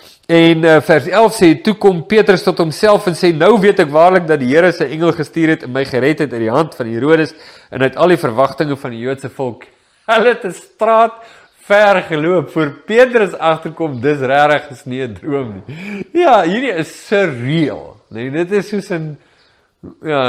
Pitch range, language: 130-185 Hz, English